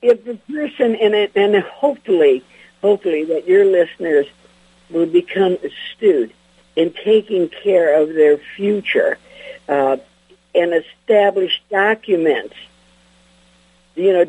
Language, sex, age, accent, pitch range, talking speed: English, female, 60-79, American, 150-220 Hz, 105 wpm